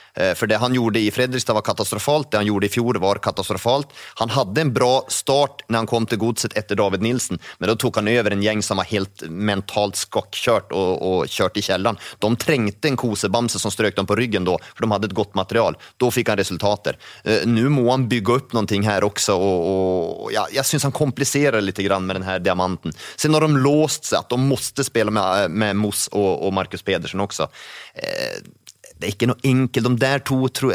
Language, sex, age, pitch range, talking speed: English, male, 30-49, 105-130 Hz, 220 wpm